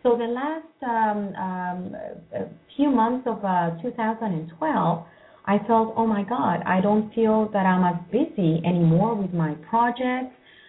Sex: female